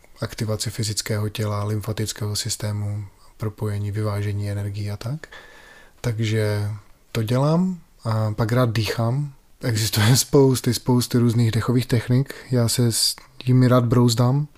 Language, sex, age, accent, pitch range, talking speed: Czech, male, 20-39, native, 110-125 Hz, 120 wpm